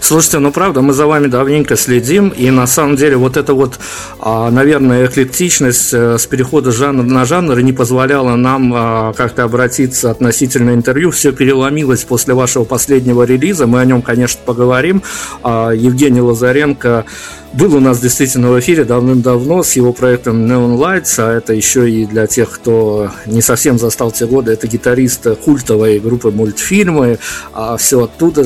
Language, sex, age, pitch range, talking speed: Russian, male, 50-69, 115-135 Hz, 155 wpm